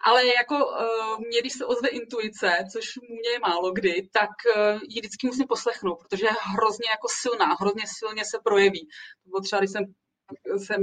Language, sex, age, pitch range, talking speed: Czech, female, 30-49, 200-255 Hz, 160 wpm